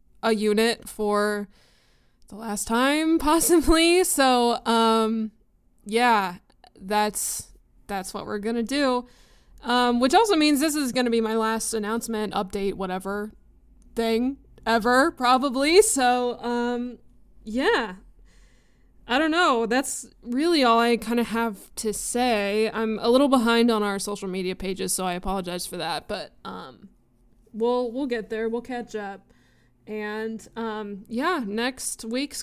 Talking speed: 140 wpm